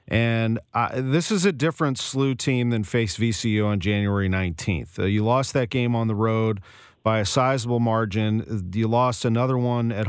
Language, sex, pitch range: English, male, 110-135 Hz